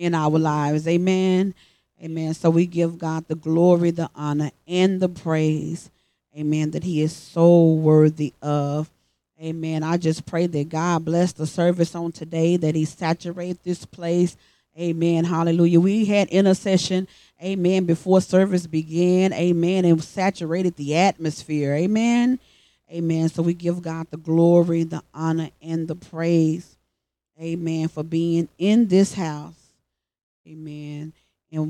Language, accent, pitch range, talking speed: English, American, 160-210 Hz, 140 wpm